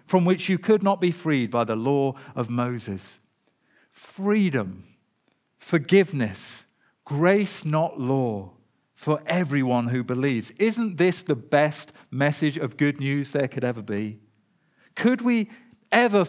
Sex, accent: male, British